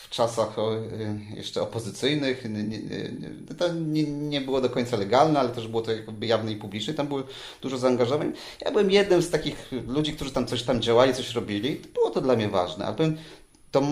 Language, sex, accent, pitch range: Polish, male, native, 125-155 Hz